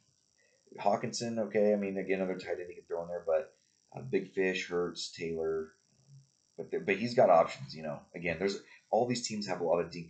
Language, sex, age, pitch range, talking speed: English, male, 30-49, 80-105 Hz, 215 wpm